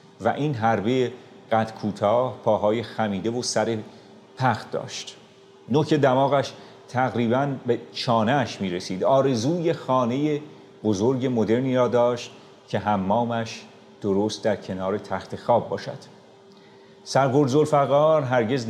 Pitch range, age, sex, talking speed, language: 105-130 Hz, 30-49, male, 105 wpm, Persian